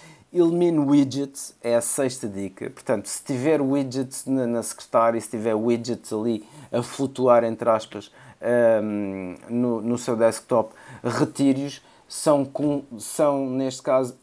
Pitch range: 115-140 Hz